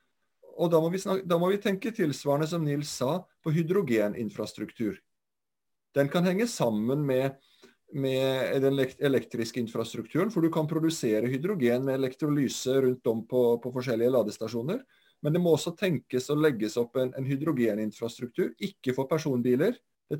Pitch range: 125-165 Hz